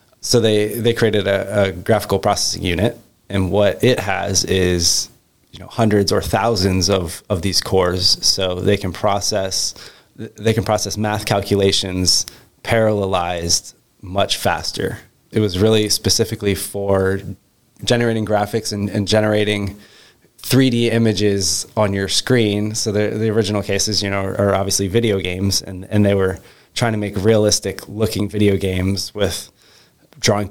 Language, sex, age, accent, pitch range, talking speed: English, male, 20-39, American, 95-105 Hz, 150 wpm